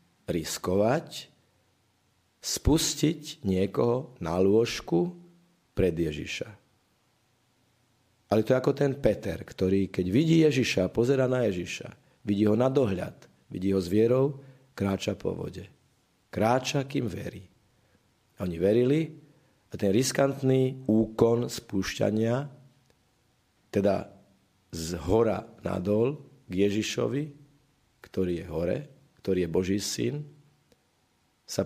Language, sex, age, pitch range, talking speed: Slovak, male, 50-69, 95-130 Hz, 105 wpm